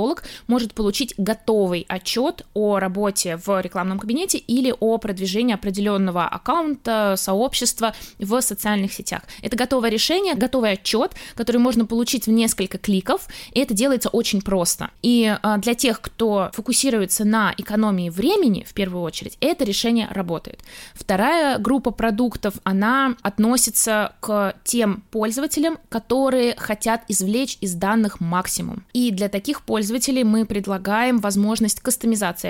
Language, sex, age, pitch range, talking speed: Russian, female, 20-39, 195-235 Hz, 130 wpm